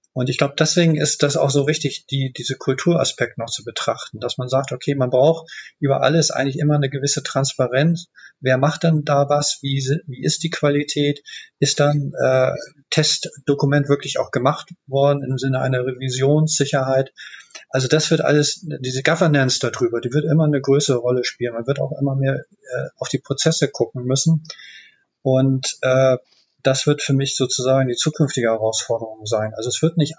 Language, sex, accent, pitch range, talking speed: German, male, German, 130-145 Hz, 180 wpm